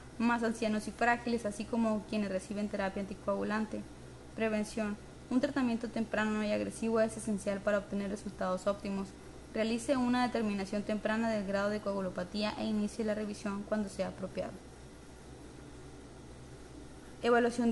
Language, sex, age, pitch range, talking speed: Spanish, female, 20-39, 205-235 Hz, 130 wpm